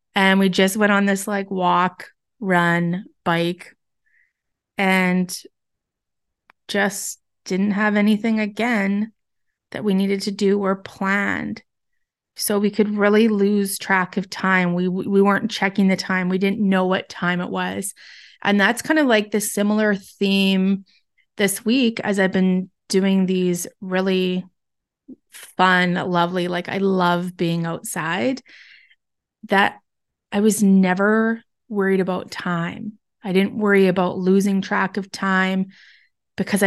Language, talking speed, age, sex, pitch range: English, 135 wpm, 20-39, female, 185-210 Hz